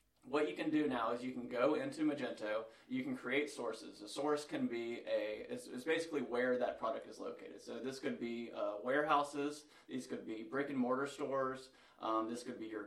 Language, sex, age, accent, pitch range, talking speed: English, male, 20-39, American, 115-145 Hz, 205 wpm